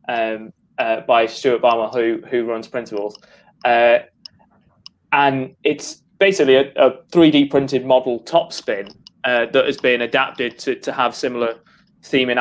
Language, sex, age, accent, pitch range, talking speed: English, male, 20-39, British, 120-155 Hz, 140 wpm